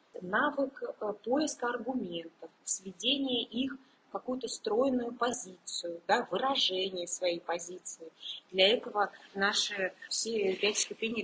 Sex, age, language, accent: female, 20-39, Russian, native